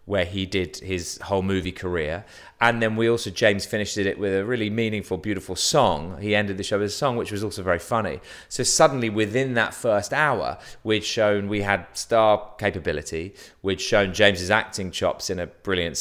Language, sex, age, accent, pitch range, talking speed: English, male, 30-49, British, 90-110 Hz, 195 wpm